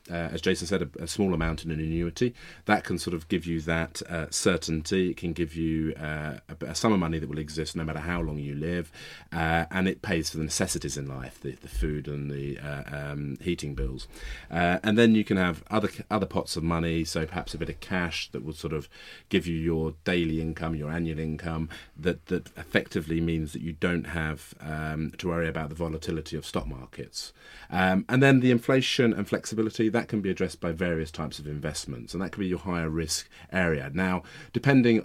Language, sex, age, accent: English, male, 30-49, British